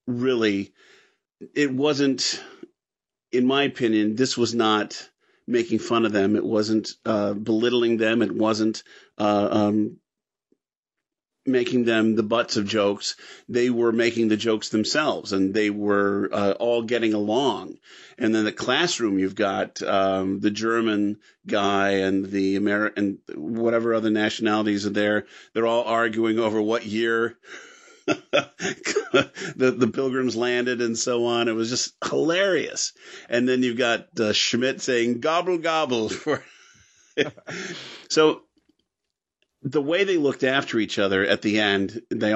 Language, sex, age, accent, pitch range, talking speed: English, male, 50-69, American, 105-125 Hz, 140 wpm